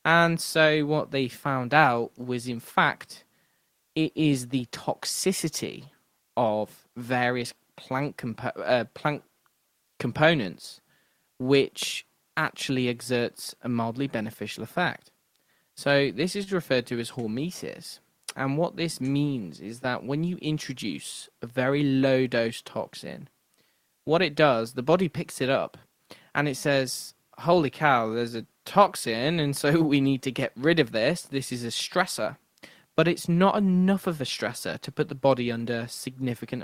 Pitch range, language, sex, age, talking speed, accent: 120-150 Hz, English, male, 20-39, 145 wpm, British